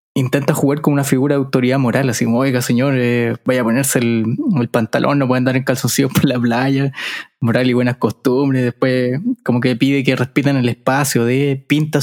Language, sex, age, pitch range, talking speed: Spanish, male, 20-39, 130-160 Hz, 210 wpm